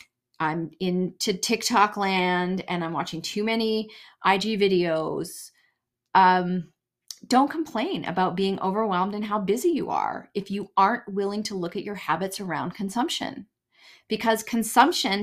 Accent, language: American, English